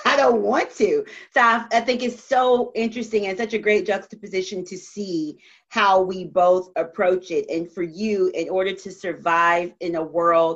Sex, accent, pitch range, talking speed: female, American, 170-230 Hz, 190 wpm